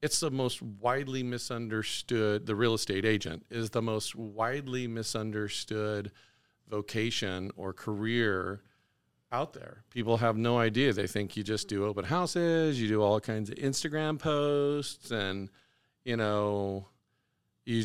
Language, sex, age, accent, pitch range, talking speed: English, male, 40-59, American, 105-125 Hz, 140 wpm